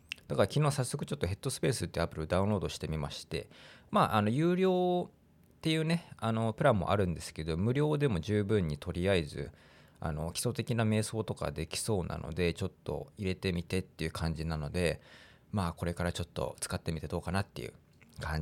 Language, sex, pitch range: Japanese, male, 85-125 Hz